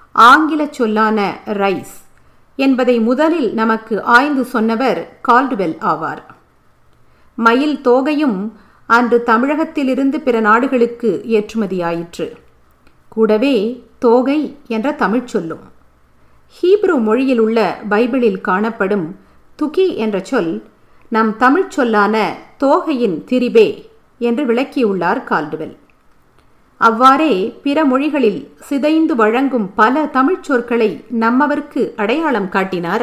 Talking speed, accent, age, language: 85 wpm, native, 50-69, Tamil